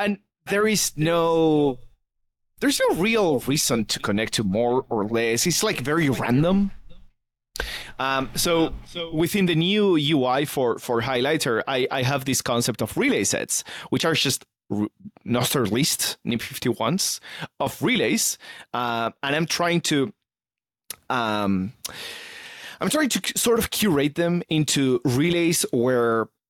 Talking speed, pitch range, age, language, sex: 145 wpm, 115-175 Hz, 30-49, English, male